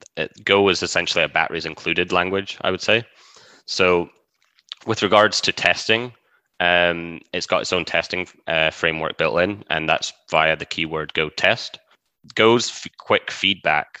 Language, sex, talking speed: English, male, 155 wpm